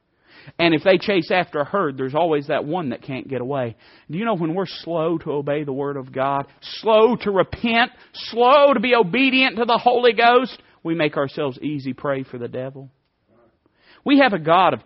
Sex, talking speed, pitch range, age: male, 205 wpm, 125-185 Hz, 40-59